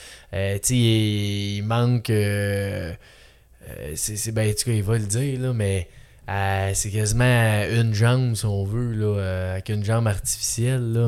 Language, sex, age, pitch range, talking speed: French, male, 20-39, 100-130 Hz, 145 wpm